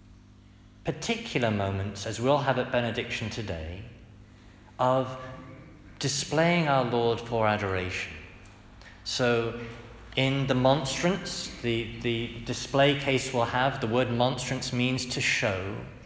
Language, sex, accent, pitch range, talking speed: English, male, British, 105-130 Hz, 110 wpm